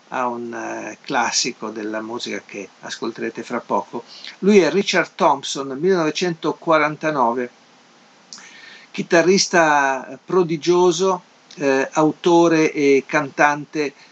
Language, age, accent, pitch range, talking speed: Italian, 50-69, native, 125-155 Hz, 80 wpm